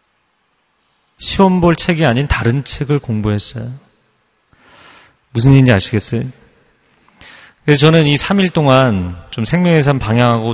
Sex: male